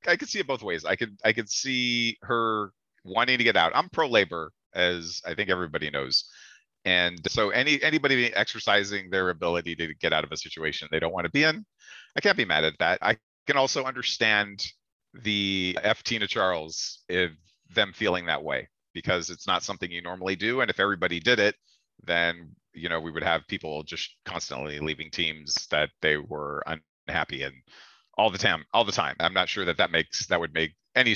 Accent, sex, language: American, male, English